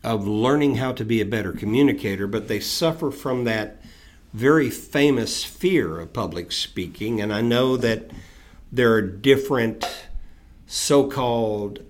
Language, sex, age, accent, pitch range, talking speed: English, male, 50-69, American, 95-120 Hz, 135 wpm